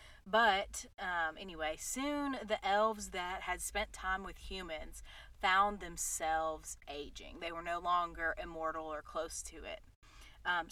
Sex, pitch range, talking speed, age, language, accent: female, 165-205 Hz, 140 wpm, 30-49, English, American